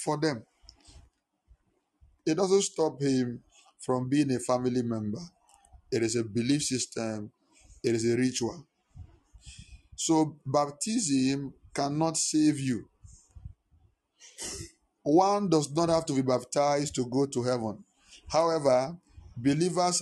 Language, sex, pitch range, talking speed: English, male, 125-160 Hz, 115 wpm